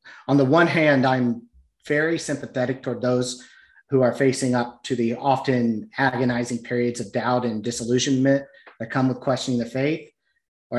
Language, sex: English, male